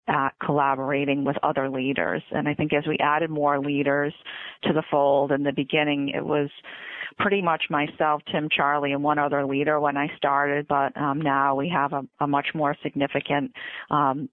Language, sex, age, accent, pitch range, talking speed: English, female, 40-59, American, 140-150 Hz, 185 wpm